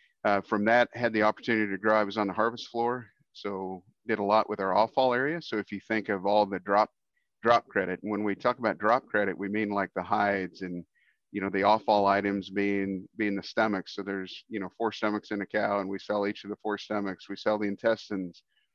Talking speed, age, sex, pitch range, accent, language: 235 wpm, 40-59, male, 100-110 Hz, American, English